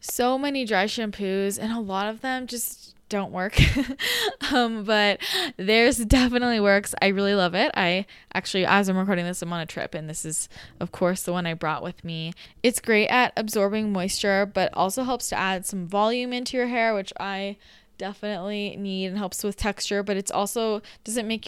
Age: 10-29